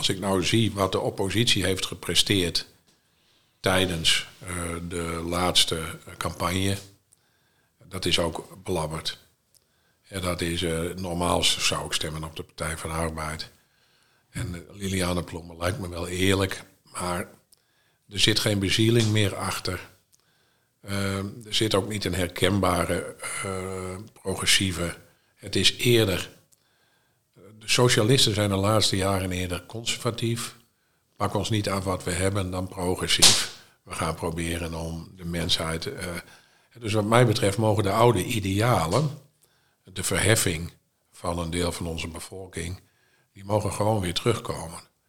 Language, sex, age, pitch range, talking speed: Dutch, male, 50-69, 90-110 Hz, 135 wpm